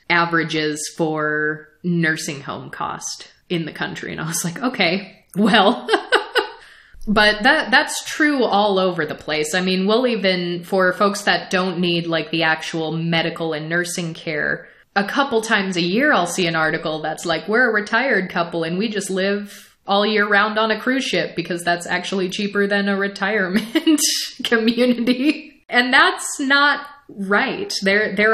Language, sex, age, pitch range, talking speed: English, female, 20-39, 170-220 Hz, 165 wpm